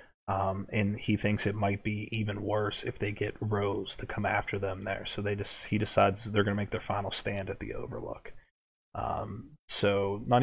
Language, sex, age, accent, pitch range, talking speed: English, male, 20-39, American, 100-105 Hz, 205 wpm